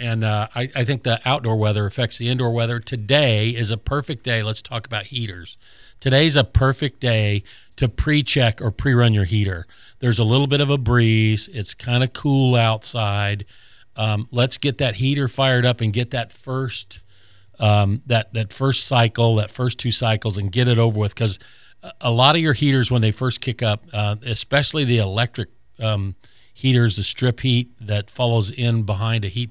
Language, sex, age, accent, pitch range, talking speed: English, male, 50-69, American, 105-125 Hz, 195 wpm